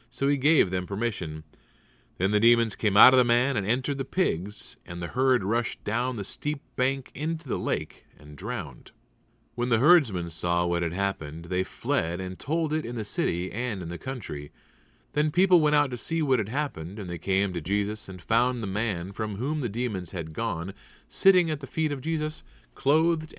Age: 30-49